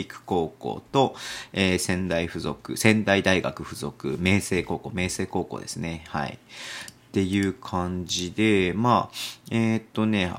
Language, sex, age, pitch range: Japanese, male, 40-59, 90-110 Hz